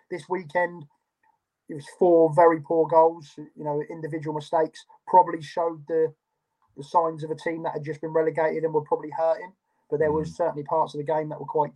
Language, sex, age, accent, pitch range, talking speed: English, male, 20-39, British, 145-165 Hz, 205 wpm